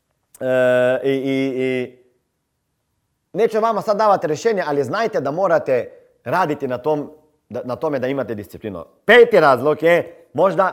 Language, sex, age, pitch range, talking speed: Croatian, male, 40-59, 130-185 Hz, 135 wpm